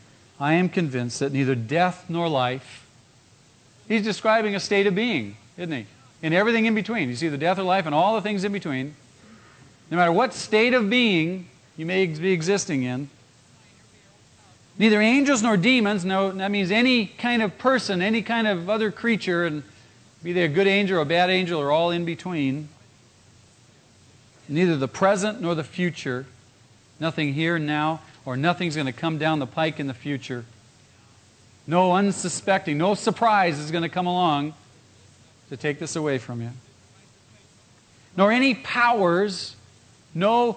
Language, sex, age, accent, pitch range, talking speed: English, male, 40-59, American, 120-185 Hz, 170 wpm